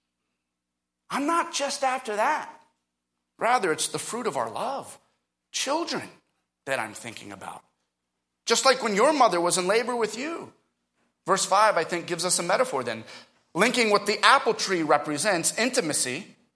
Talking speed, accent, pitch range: 155 wpm, American, 140-225 Hz